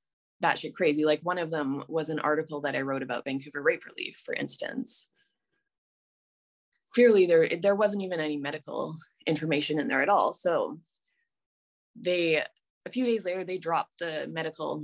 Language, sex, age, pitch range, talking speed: English, female, 20-39, 145-195 Hz, 165 wpm